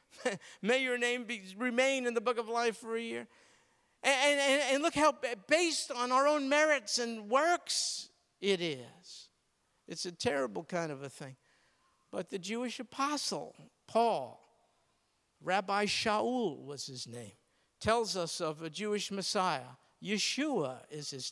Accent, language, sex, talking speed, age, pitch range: American, English, male, 145 wpm, 50-69, 205-310 Hz